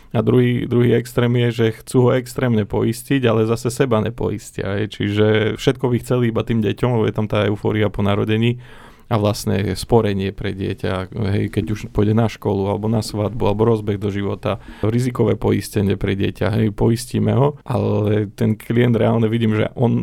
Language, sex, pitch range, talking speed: Slovak, male, 105-115 Hz, 185 wpm